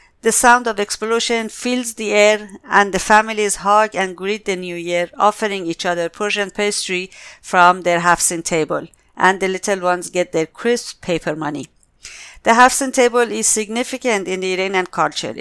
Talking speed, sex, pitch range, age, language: 170 wpm, female, 180-215 Hz, 50-69, English